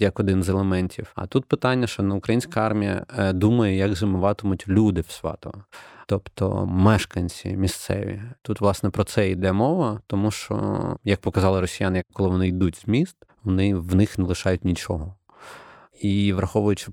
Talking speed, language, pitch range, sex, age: 160 wpm, Ukrainian, 90-105 Hz, male, 20-39